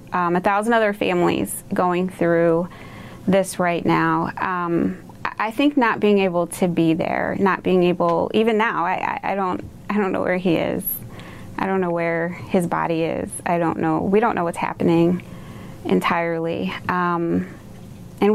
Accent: American